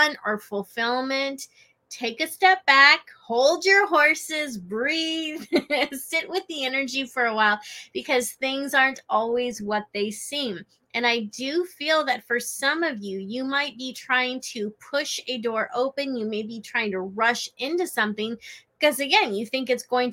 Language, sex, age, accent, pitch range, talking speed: English, female, 20-39, American, 215-275 Hz, 165 wpm